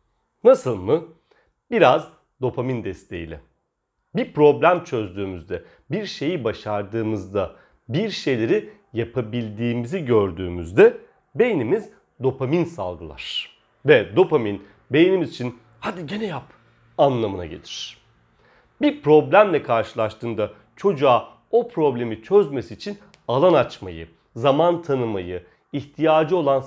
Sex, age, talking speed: male, 40-59, 90 wpm